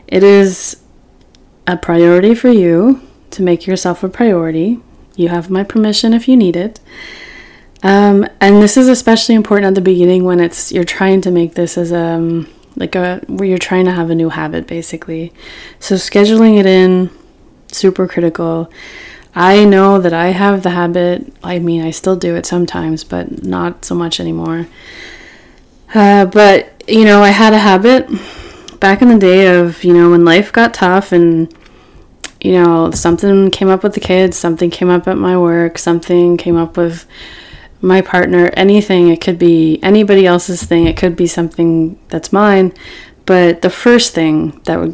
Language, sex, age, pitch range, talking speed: English, female, 20-39, 170-195 Hz, 180 wpm